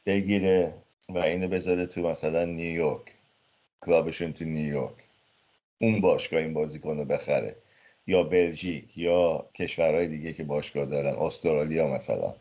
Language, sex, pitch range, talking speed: Persian, male, 80-100 Hz, 120 wpm